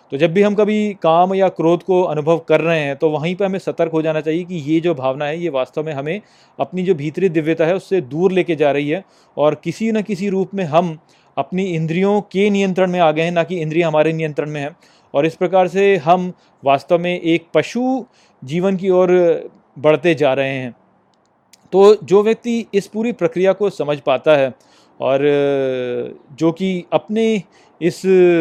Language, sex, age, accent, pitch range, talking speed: Hindi, male, 30-49, native, 150-185 Hz, 200 wpm